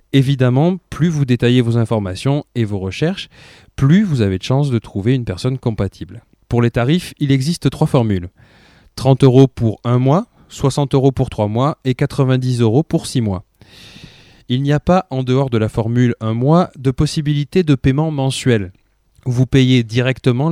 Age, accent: 20-39, French